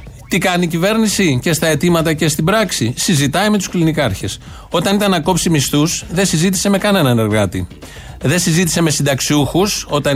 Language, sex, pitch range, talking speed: Greek, male, 130-175 Hz, 165 wpm